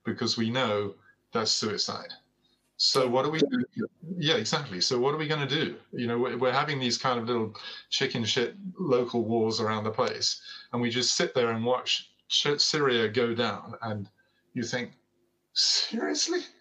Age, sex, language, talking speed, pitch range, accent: 30-49, male, English, 175 wpm, 115-150 Hz, British